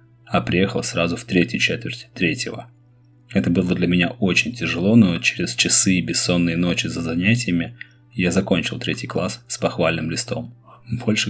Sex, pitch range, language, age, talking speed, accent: male, 85-120 Hz, Russian, 20-39, 155 wpm, native